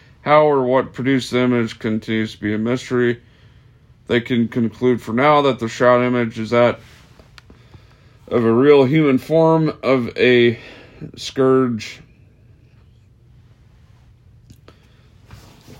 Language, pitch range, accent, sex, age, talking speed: English, 115-125 Hz, American, male, 40-59, 120 wpm